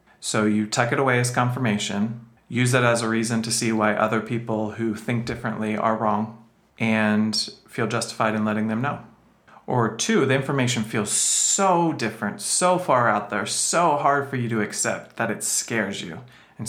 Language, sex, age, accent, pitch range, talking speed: English, male, 40-59, American, 110-145 Hz, 185 wpm